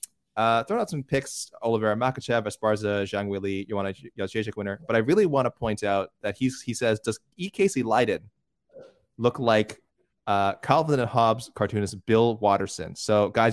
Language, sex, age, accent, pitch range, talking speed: English, male, 20-39, American, 100-125 Hz, 175 wpm